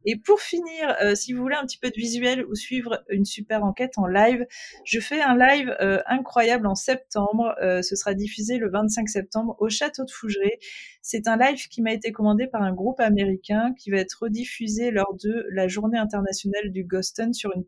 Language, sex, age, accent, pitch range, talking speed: French, female, 20-39, French, 190-235 Hz, 210 wpm